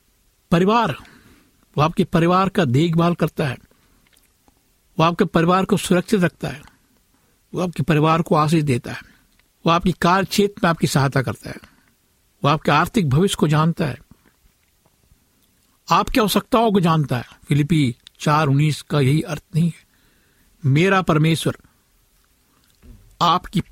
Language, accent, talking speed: Hindi, native, 130 wpm